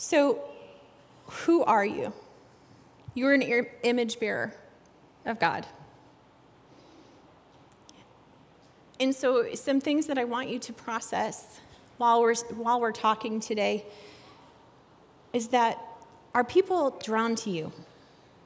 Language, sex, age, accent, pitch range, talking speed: English, female, 30-49, American, 215-270 Hz, 105 wpm